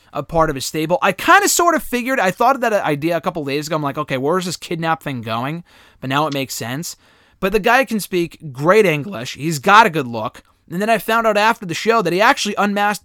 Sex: male